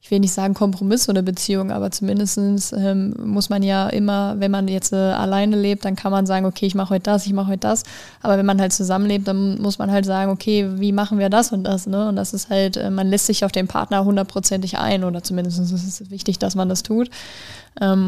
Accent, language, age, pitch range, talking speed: German, German, 20-39, 195-205 Hz, 240 wpm